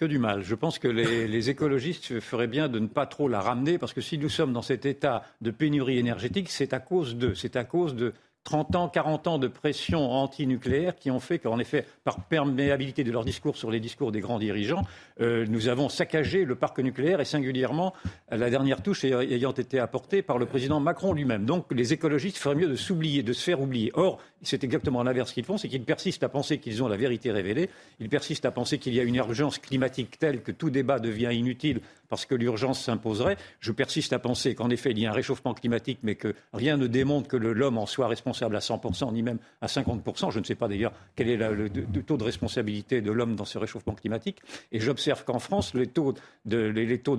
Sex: male